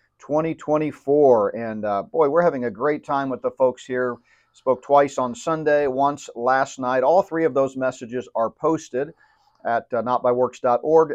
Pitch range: 120-150 Hz